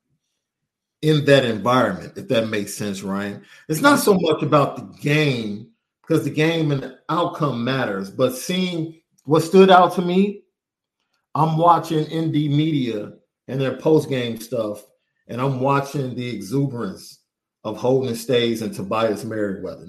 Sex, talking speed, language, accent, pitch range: male, 145 wpm, English, American, 125-160 Hz